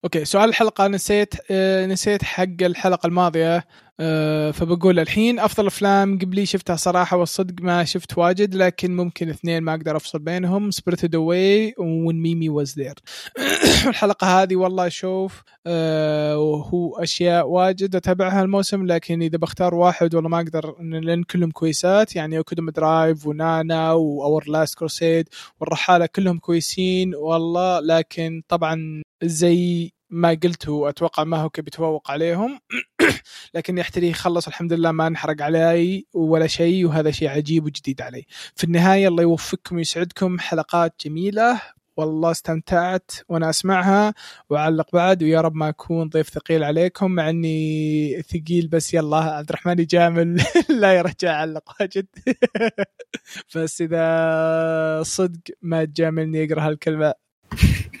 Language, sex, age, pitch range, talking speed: Arabic, male, 20-39, 160-185 Hz, 130 wpm